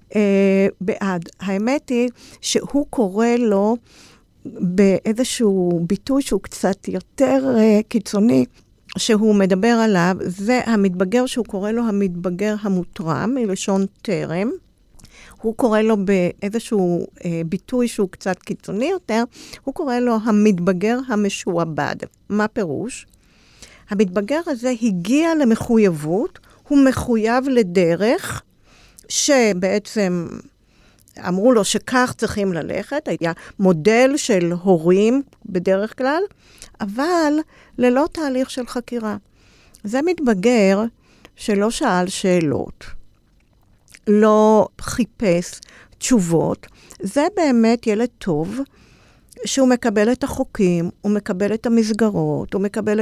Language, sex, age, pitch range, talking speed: Hebrew, female, 50-69, 195-250 Hz, 95 wpm